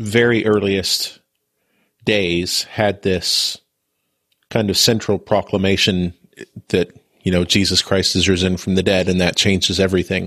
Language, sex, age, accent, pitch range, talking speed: English, male, 40-59, American, 95-105 Hz, 135 wpm